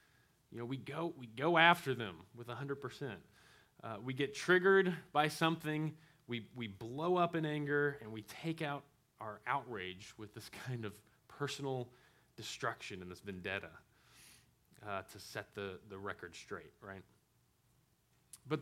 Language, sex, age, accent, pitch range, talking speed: English, male, 30-49, American, 110-140 Hz, 150 wpm